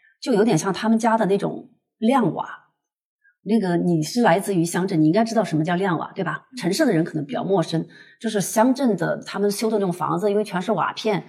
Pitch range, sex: 185-235 Hz, female